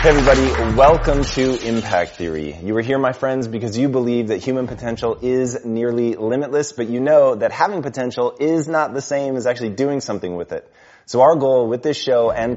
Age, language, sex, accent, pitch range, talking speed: 30-49, Hindi, male, American, 105-130 Hz, 205 wpm